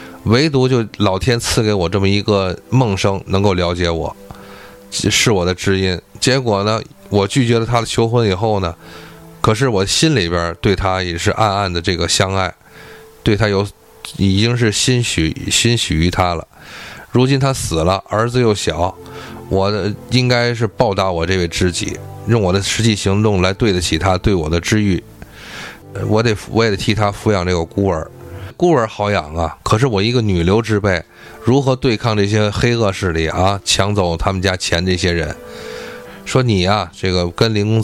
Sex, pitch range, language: male, 90-115 Hz, Chinese